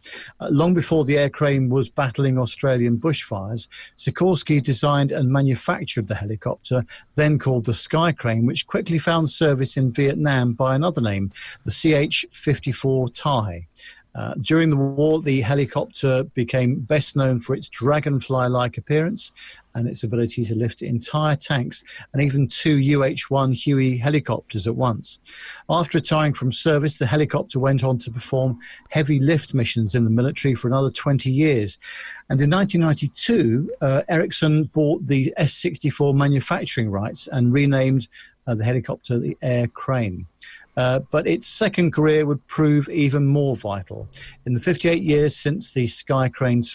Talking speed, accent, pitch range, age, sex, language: 150 wpm, British, 125-150 Hz, 50-69, male, English